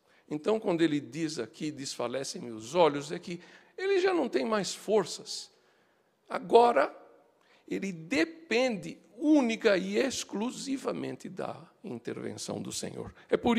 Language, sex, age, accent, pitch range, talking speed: Portuguese, male, 60-79, Brazilian, 155-245 Hz, 125 wpm